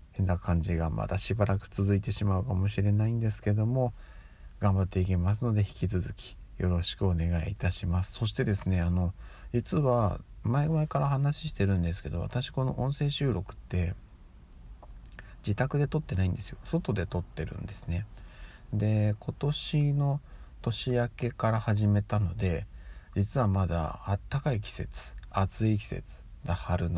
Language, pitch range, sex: Japanese, 90-110 Hz, male